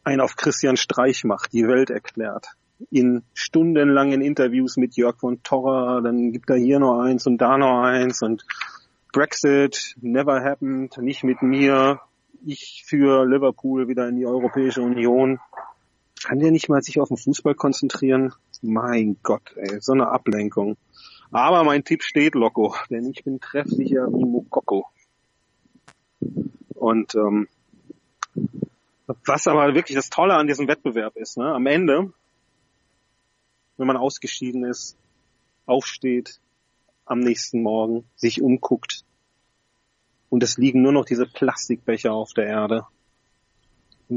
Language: German